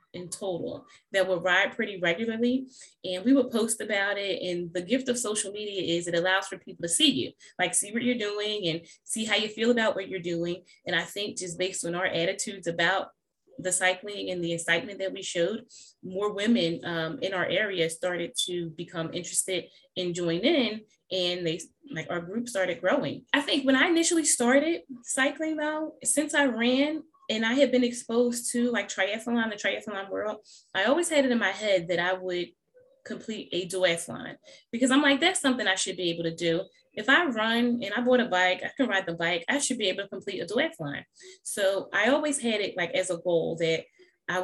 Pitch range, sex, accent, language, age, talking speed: 175-240 Hz, female, American, English, 20-39, 210 wpm